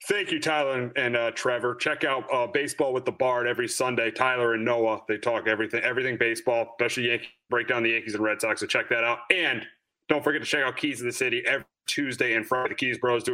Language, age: English, 30-49